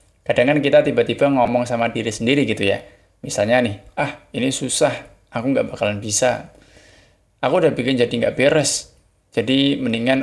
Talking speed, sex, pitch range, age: 155 wpm, male, 105-135 Hz, 20-39